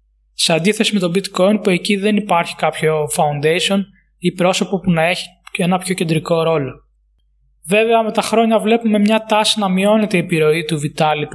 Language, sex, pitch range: Greek, male, 155-195 Hz